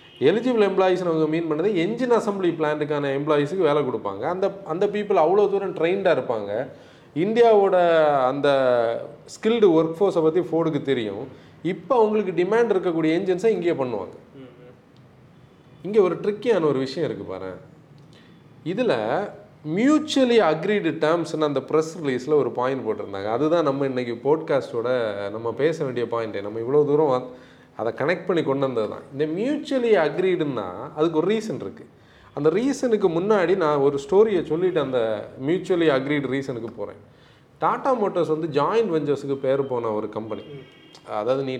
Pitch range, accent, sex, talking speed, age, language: 140-200 Hz, native, male, 105 wpm, 30-49, Tamil